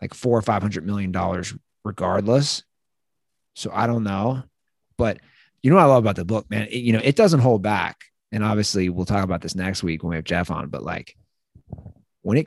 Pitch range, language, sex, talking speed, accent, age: 100-160 Hz, English, male, 210 wpm, American, 30-49